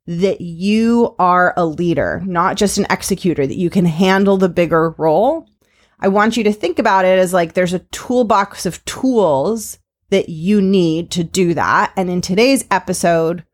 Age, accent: 30-49, American